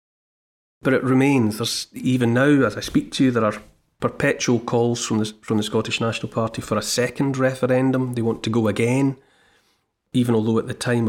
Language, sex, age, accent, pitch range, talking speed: English, male, 40-59, British, 110-130 Hz, 195 wpm